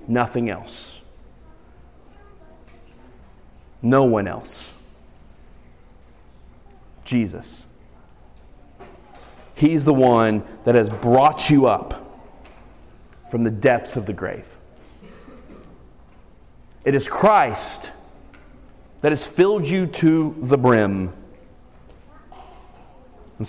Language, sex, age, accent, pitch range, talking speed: English, male, 30-49, American, 110-175 Hz, 80 wpm